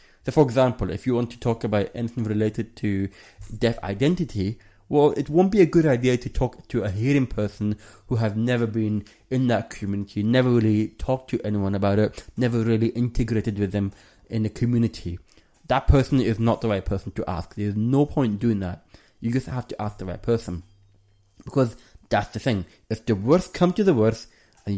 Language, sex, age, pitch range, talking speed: English, male, 20-39, 100-125 Hz, 200 wpm